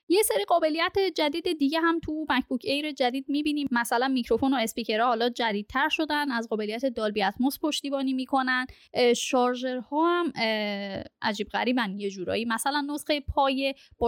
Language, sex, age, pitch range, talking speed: Persian, female, 10-29, 230-295 Hz, 150 wpm